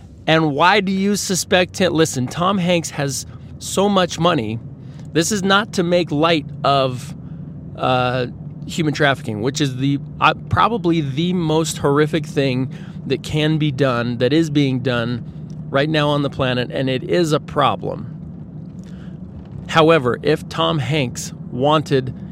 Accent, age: American, 40-59